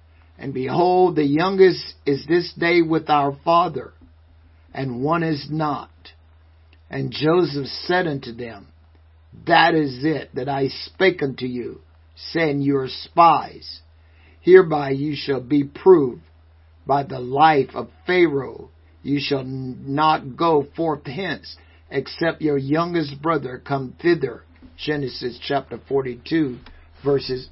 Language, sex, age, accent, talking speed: English, male, 50-69, American, 125 wpm